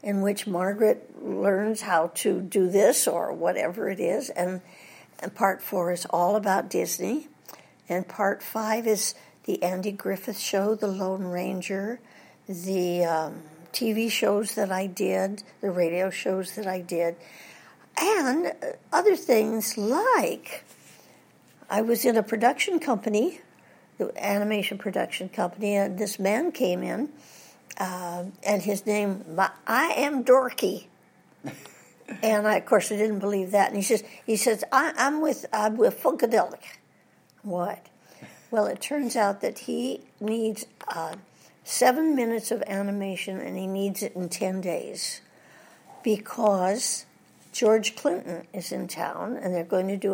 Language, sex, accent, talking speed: English, female, American, 145 wpm